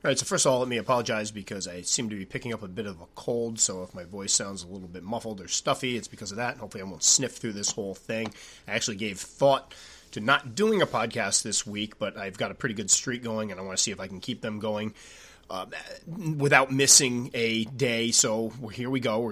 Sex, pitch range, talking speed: male, 110-135 Hz, 260 wpm